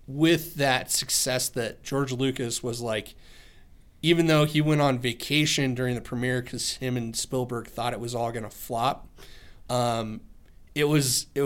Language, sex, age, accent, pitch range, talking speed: English, male, 30-49, American, 115-140 Hz, 170 wpm